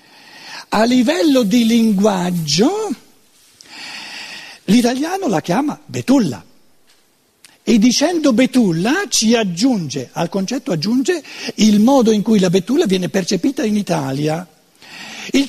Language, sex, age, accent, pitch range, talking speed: Italian, male, 60-79, native, 185-260 Hz, 105 wpm